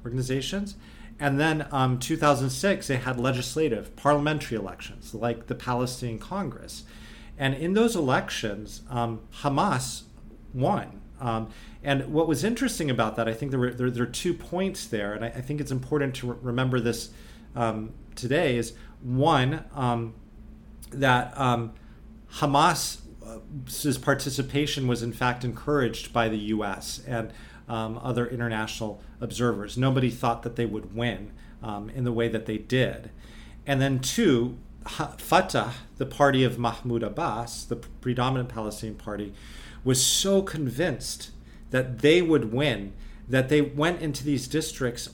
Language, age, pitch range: English, 40-59, 115-140 Hz